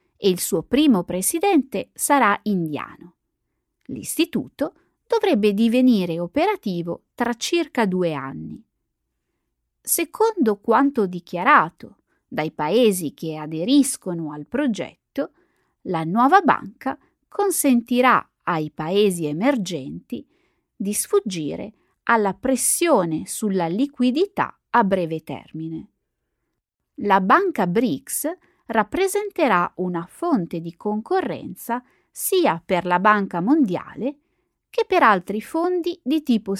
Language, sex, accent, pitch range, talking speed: Italian, female, native, 175-285 Hz, 95 wpm